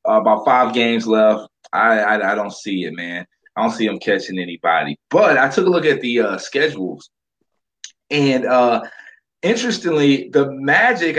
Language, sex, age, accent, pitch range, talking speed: English, male, 20-39, American, 120-165 Hz, 170 wpm